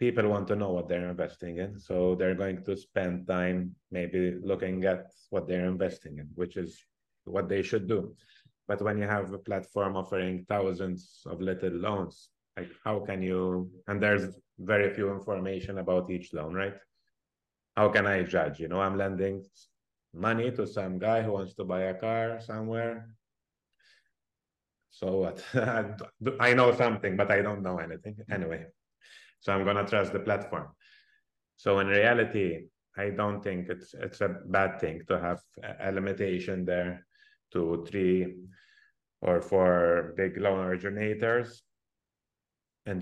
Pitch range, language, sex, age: 90-105 Hz, English, male, 30-49